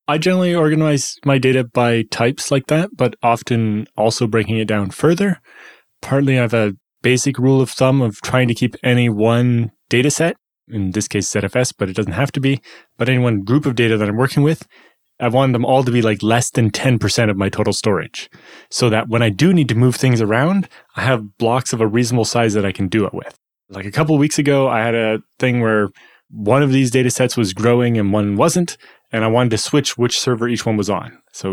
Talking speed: 230 wpm